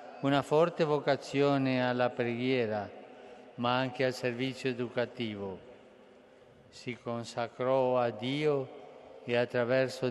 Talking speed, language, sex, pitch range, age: 95 wpm, Italian, male, 120-135 Hz, 50-69